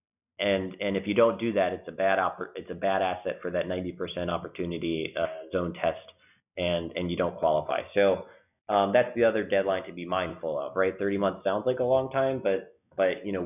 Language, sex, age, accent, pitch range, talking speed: English, male, 30-49, American, 90-100 Hz, 220 wpm